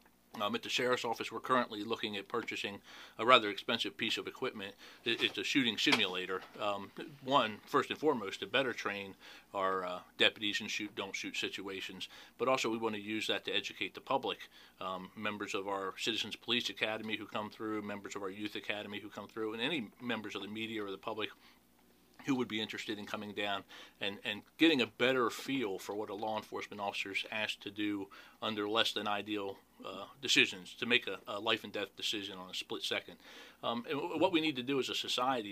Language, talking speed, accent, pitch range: English, 210 wpm, American, 100-110 Hz